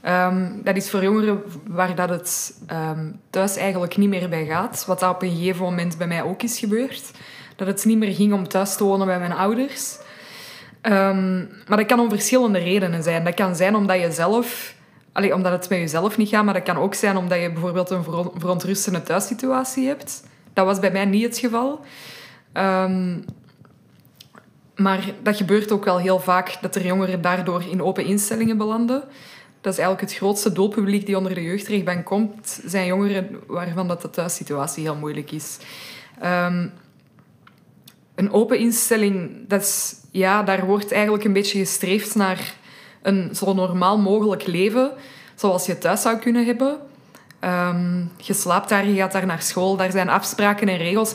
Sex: female